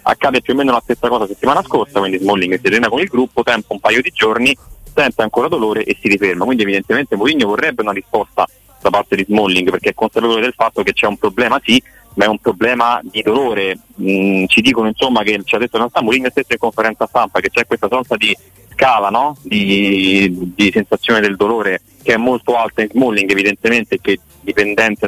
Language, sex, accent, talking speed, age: Italian, male, native, 220 wpm, 30-49